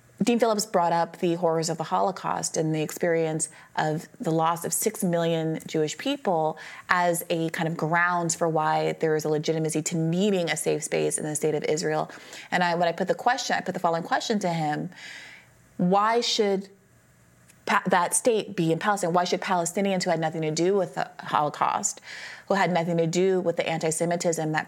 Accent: American